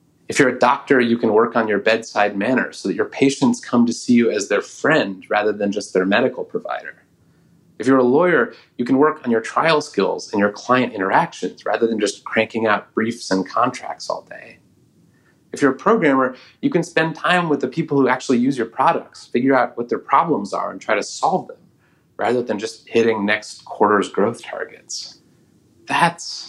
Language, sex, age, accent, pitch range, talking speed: English, male, 30-49, American, 100-130 Hz, 200 wpm